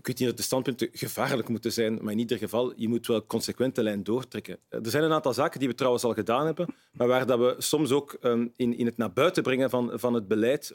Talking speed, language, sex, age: 245 wpm, Dutch, male, 40-59